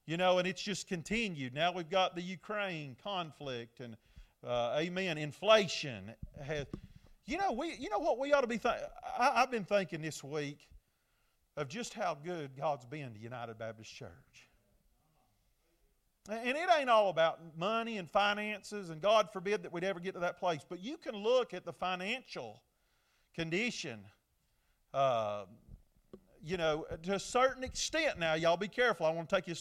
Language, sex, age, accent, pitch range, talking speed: English, male, 40-59, American, 160-230 Hz, 170 wpm